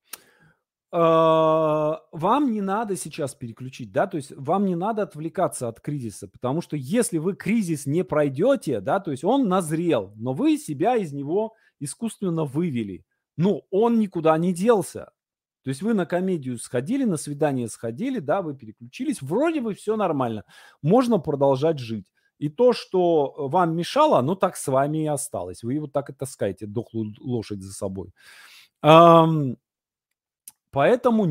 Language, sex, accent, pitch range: Russian, male, native, 135-205 Hz